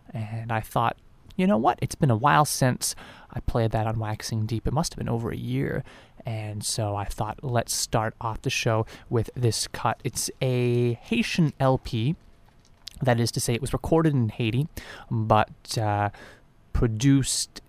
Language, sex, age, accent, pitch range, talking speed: English, male, 20-39, American, 110-130 Hz, 175 wpm